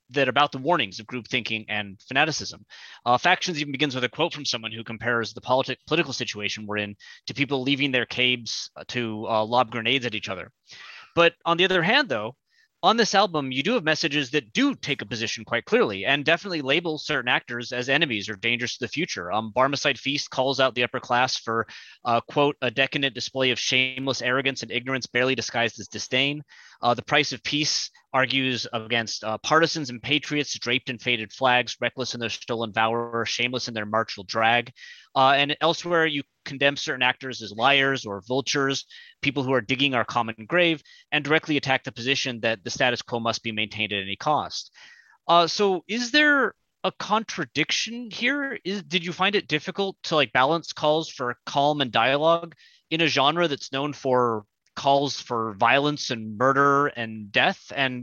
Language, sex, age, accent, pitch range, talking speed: English, male, 20-39, American, 120-150 Hz, 190 wpm